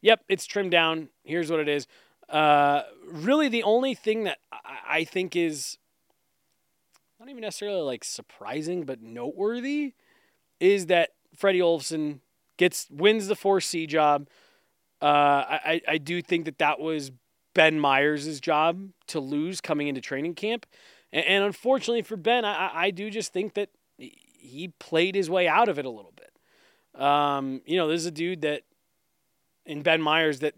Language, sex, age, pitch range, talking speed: English, male, 20-39, 145-190 Hz, 165 wpm